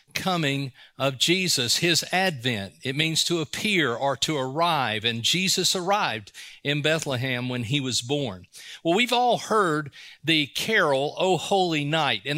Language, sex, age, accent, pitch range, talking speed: English, male, 40-59, American, 145-200 Hz, 150 wpm